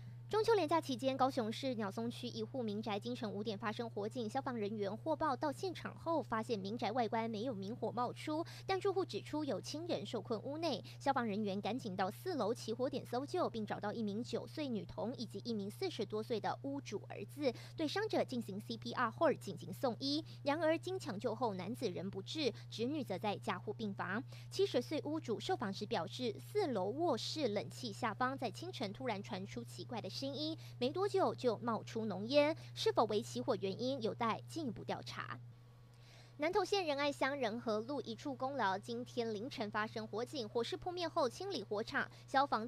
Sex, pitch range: male, 210-290 Hz